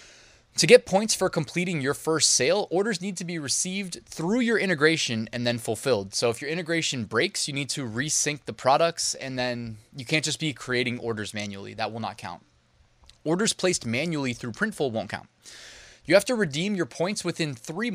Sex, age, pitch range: male, 20-39, 115-160 Hz